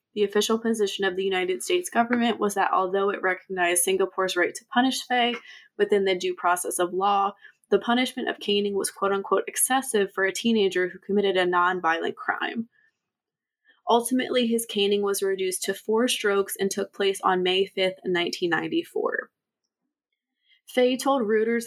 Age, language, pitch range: 20-39, English, 190-240 Hz